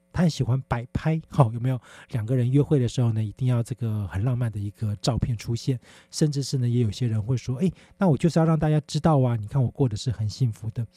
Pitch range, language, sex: 115-150 Hz, Chinese, male